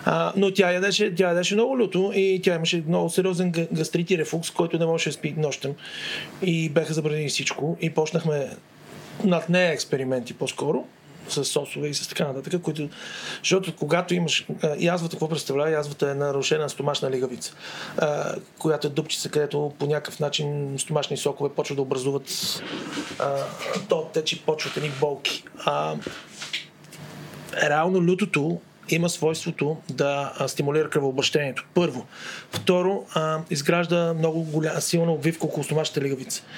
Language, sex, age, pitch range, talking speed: Bulgarian, male, 40-59, 145-175 Hz, 145 wpm